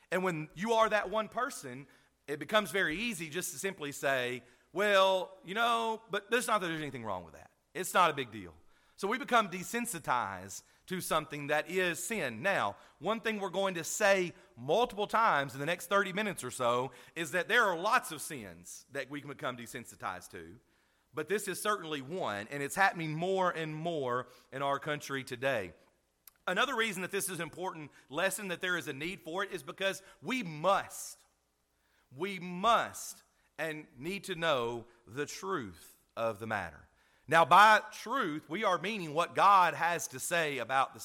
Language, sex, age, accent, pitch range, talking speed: English, male, 40-59, American, 140-200 Hz, 185 wpm